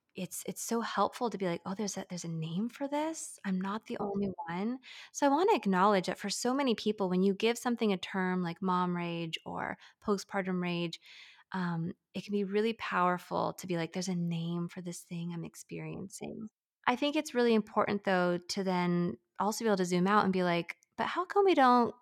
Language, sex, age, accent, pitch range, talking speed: English, female, 20-39, American, 180-220 Hz, 220 wpm